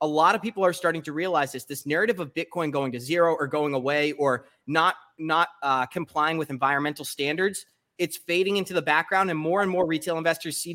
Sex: male